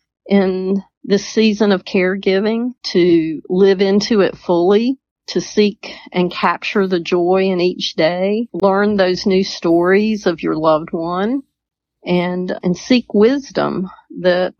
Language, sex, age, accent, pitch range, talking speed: English, female, 40-59, American, 165-190 Hz, 130 wpm